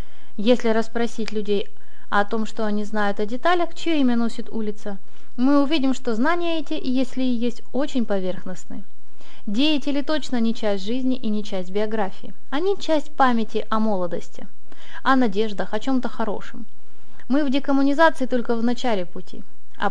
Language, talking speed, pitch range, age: Russian, 155 wpm, 210-260 Hz, 20-39